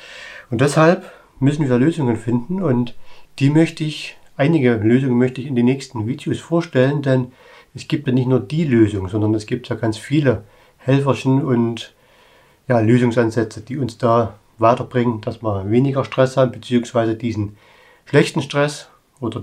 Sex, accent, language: male, German, German